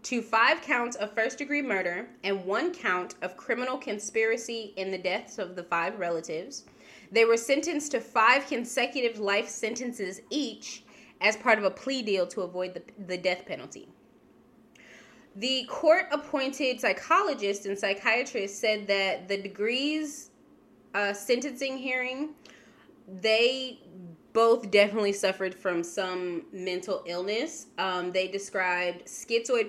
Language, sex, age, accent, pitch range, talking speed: English, female, 20-39, American, 185-240 Hz, 130 wpm